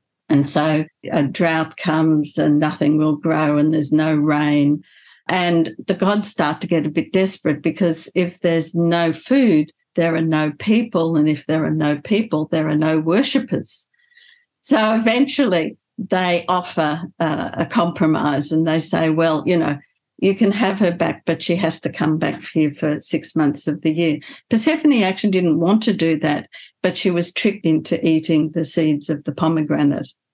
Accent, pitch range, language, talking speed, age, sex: Australian, 155-190 Hz, English, 180 wpm, 60-79, female